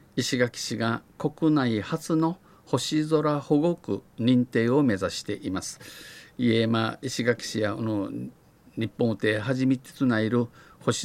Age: 50-69